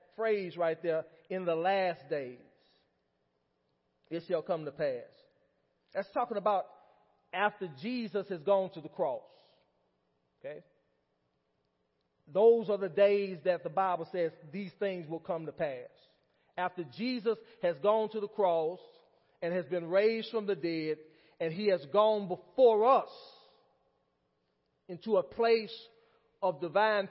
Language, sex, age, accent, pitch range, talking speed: English, male, 40-59, American, 160-230 Hz, 135 wpm